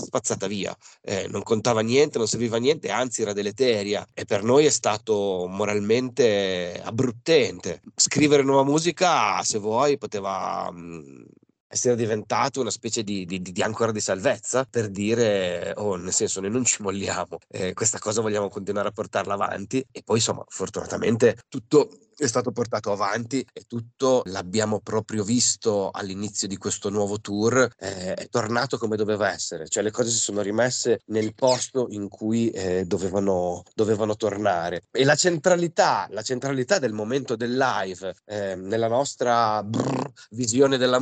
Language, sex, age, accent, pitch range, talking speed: Italian, male, 30-49, native, 105-130 Hz, 150 wpm